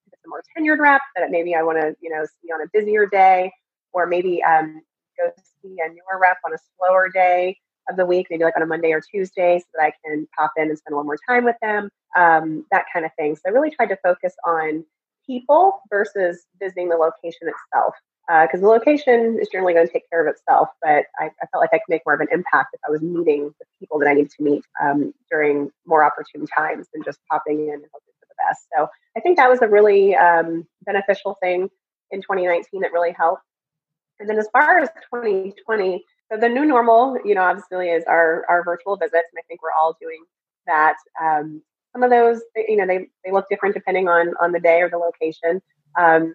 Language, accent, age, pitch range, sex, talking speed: English, American, 30-49, 160-195 Hz, female, 225 wpm